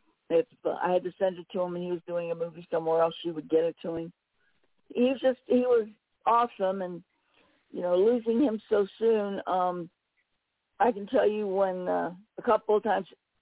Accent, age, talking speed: American, 60-79, 205 wpm